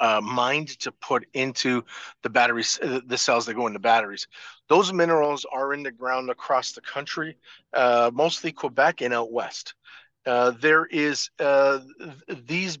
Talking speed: 155 wpm